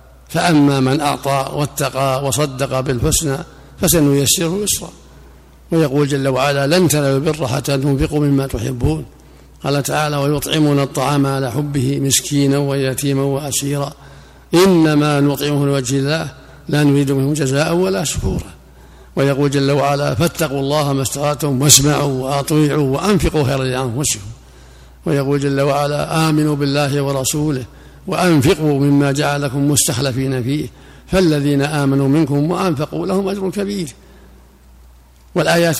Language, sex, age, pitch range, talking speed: Arabic, male, 50-69, 135-150 Hz, 115 wpm